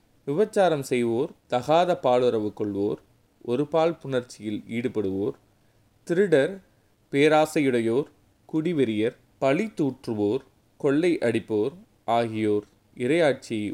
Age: 20-39